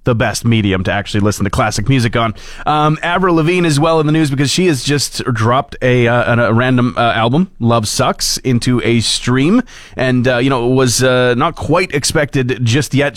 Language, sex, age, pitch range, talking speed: English, male, 30-49, 110-130 Hz, 215 wpm